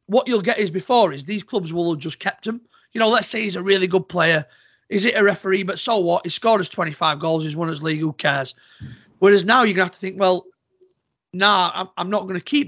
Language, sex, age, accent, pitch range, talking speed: English, male, 30-49, British, 160-205 Hz, 265 wpm